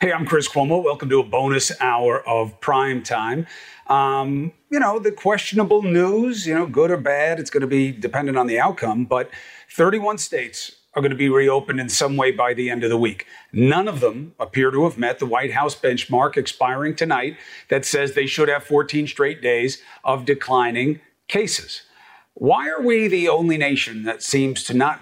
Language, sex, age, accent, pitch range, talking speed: English, male, 40-59, American, 135-200 Hz, 190 wpm